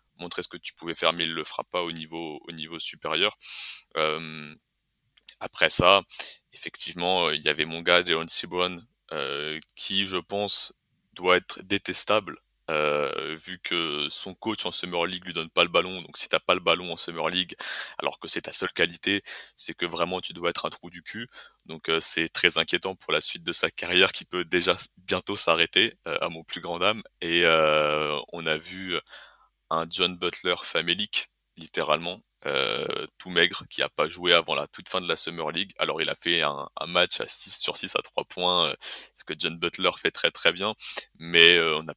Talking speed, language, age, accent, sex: 210 wpm, French, 20-39, French, male